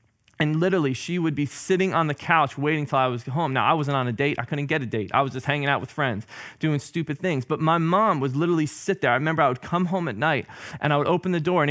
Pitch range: 135-175 Hz